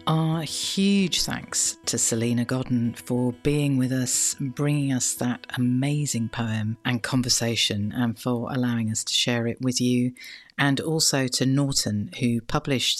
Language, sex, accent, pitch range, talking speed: English, female, British, 120-140 Hz, 150 wpm